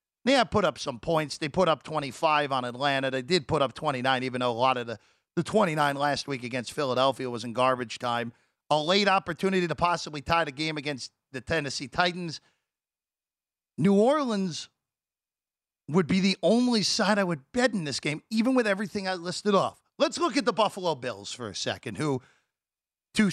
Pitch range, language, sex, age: 145-215 Hz, English, male, 40-59